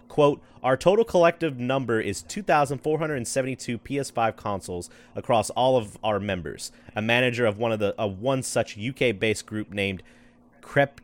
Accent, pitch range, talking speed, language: American, 105-145 Hz, 145 wpm, English